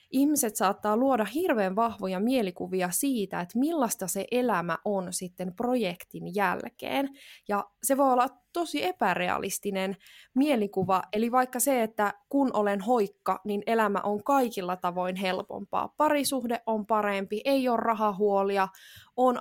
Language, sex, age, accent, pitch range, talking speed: Finnish, female, 20-39, native, 195-255 Hz, 130 wpm